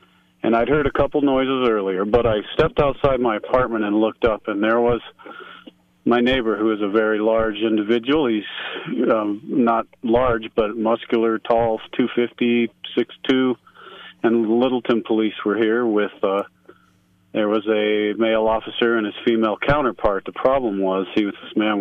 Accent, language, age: American, English, 40-59